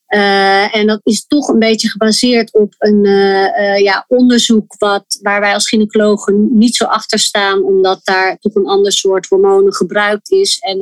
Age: 30-49